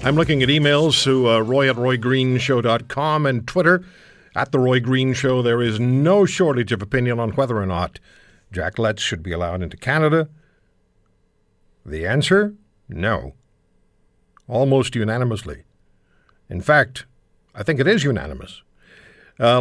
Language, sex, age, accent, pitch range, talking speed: English, male, 60-79, American, 110-150 Hz, 140 wpm